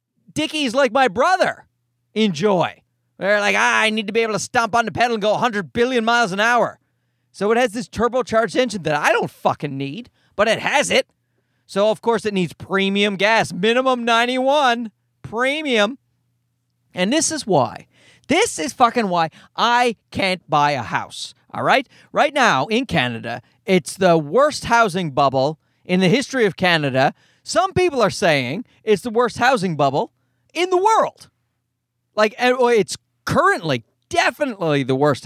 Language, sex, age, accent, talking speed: English, male, 30-49, American, 165 wpm